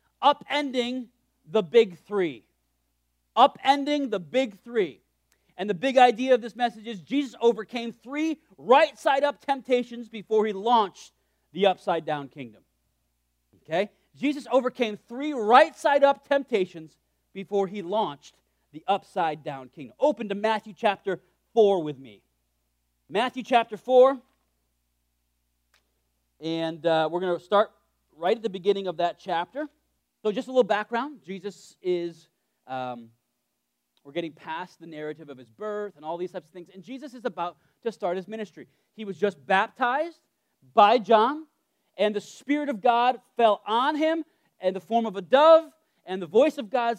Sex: male